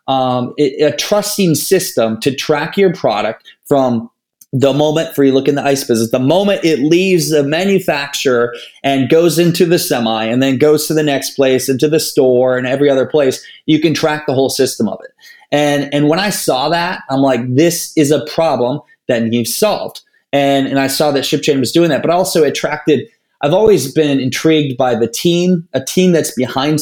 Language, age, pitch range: English, 20-39, 130-155 Hz